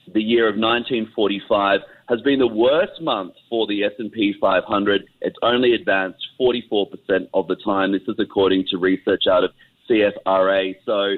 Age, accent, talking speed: 30-49, Australian, 155 wpm